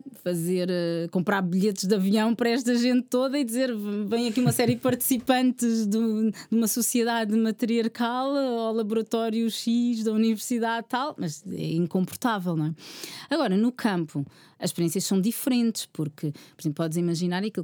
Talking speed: 160 wpm